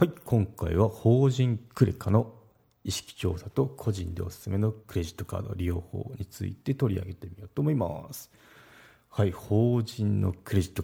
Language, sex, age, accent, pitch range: Japanese, male, 40-59, native, 95-120 Hz